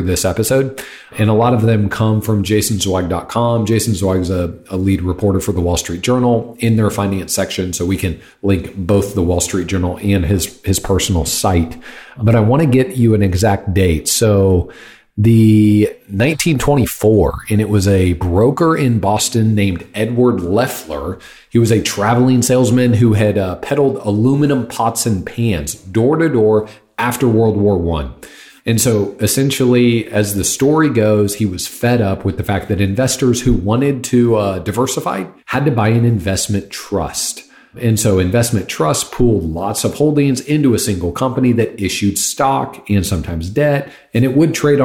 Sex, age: male, 40-59